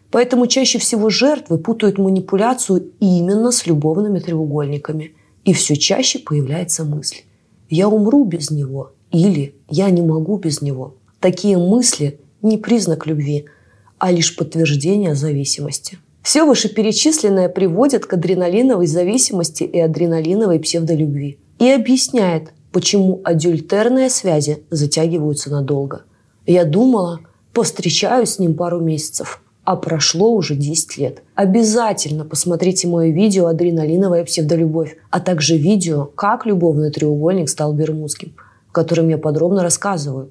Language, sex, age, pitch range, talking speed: Russian, female, 20-39, 155-210 Hz, 120 wpm